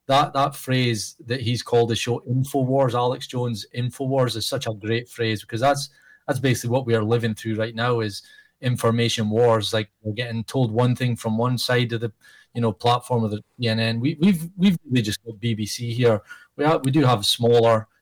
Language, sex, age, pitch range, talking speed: English, male, 30-49, 110-125 Hz, 205 wpm